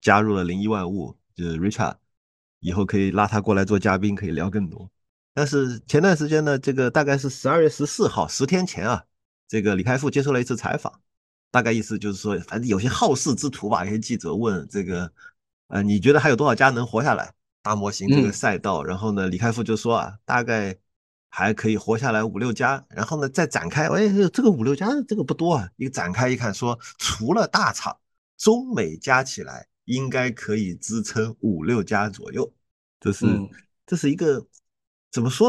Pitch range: 105-145 Hz